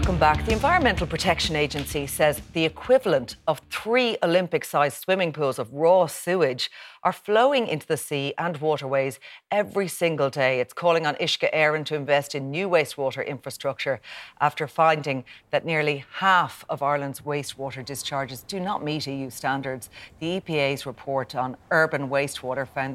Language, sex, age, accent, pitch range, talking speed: English, female, 40-59, Irish, 135-160 Hz, 155 wpm